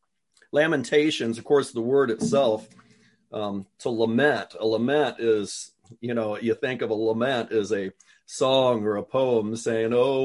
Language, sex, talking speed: English, male, 160 wpm